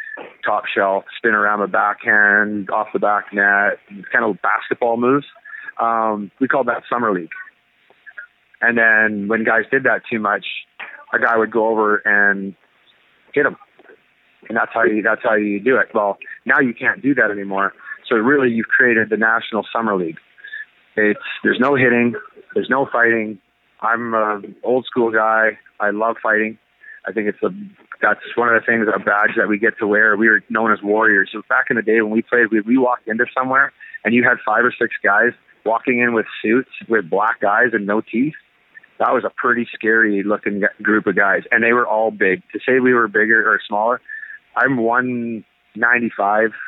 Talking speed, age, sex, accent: 190 wpm, 30-49, male, American